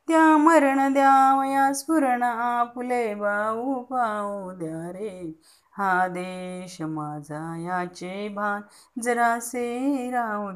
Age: 30-49